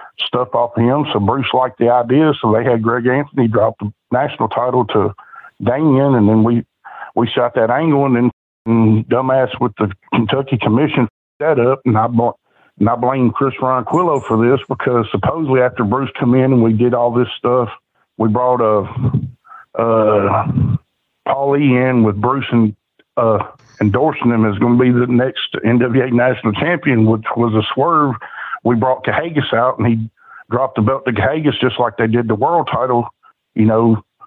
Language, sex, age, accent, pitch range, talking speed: English, male, 50-69, American, 110-130 Hz, 180 wpm